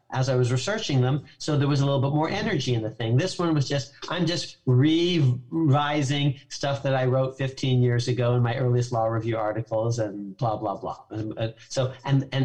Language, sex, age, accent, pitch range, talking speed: English, male, 40-59, American, 115-135 Hz, 215 wpm